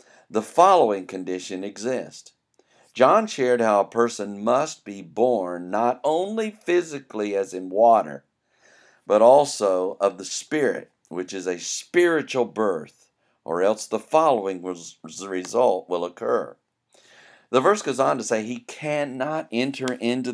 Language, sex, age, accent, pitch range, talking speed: English, male, 50-69, American, 105-165 Hz, 140 wpm